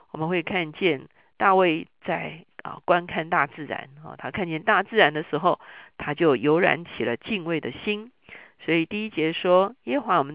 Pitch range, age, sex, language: 155-205 Hz, 50-69, female, Chinese